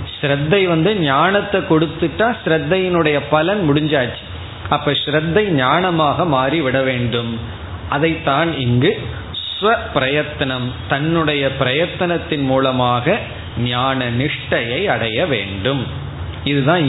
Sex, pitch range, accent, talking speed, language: male, 115-155 Hz, native, 80 wpm, Tamil